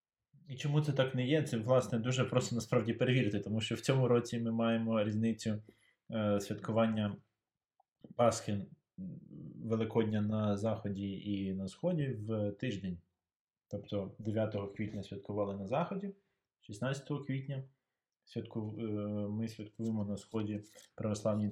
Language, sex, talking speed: Ukrainian, male, 125 wpm